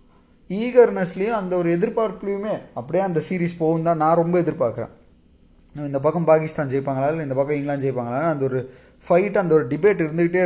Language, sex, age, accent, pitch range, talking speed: Tamil, male, 20-39, native, 145-185 Hz, 160 wpm